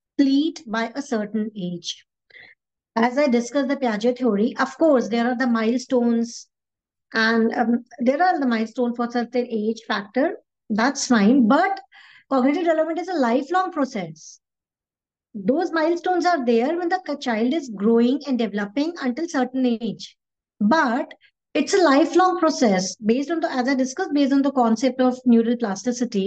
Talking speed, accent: 155 wpm, Indian